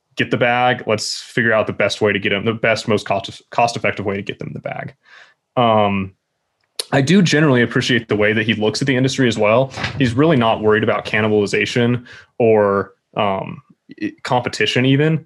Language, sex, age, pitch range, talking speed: English, male, 20-39, 105-125 Hz, 195 wpm